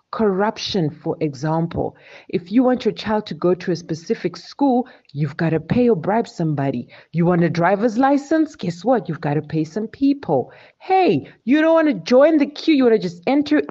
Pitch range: 170-230 Hz